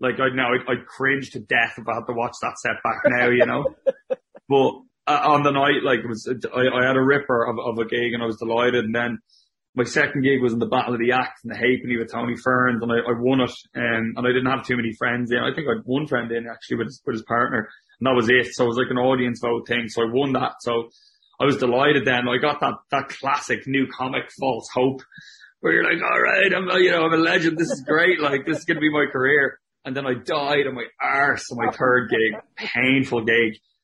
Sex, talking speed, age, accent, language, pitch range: male, 265 wpm, 20-39, Irish, English, 115-130 Hz